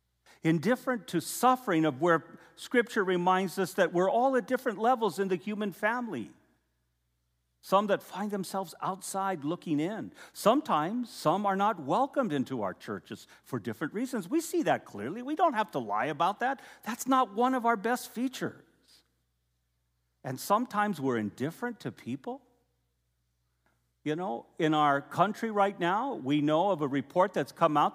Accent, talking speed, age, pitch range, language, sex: American, 160 wpm, 50-69, 140-215 Hz, English, male